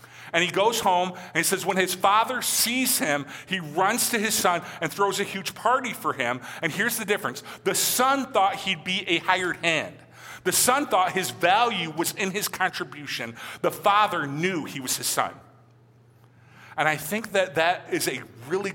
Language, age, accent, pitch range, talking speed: English, 40-59, American, 125-190 Hz, 190 wpm